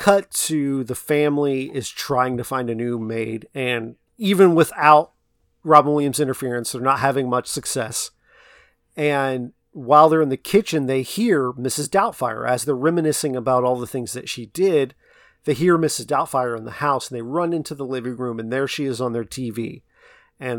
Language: English